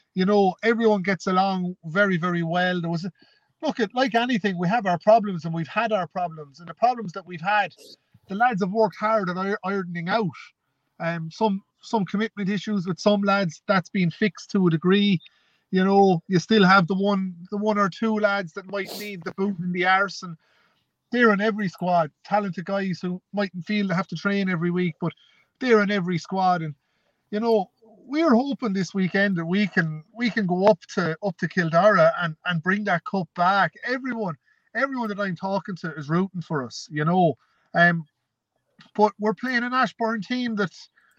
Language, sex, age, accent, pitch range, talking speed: English, male, 30-49, Irish, 180-215 Hz, 200 wpm